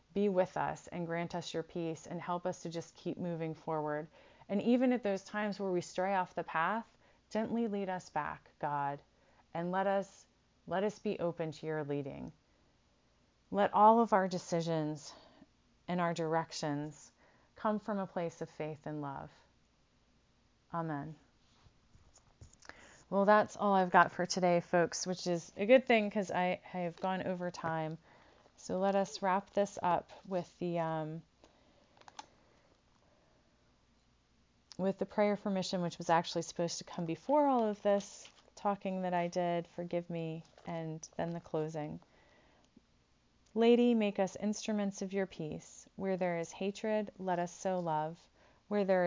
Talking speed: 155 wpm